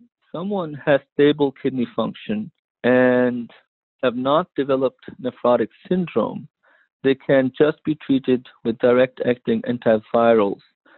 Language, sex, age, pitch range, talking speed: English, male, 50-69, 115-135 Hz, 105 wpm